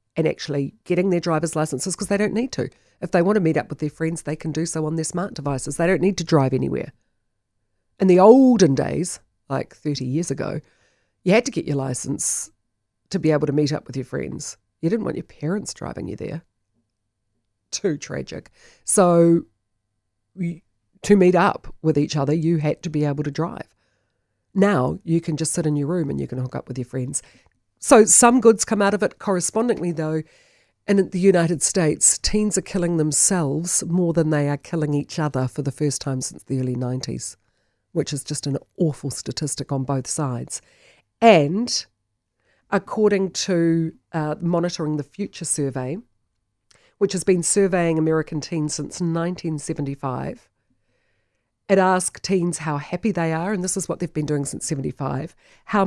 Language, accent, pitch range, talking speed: English, Australian, 135-180 Hz, 185 wpm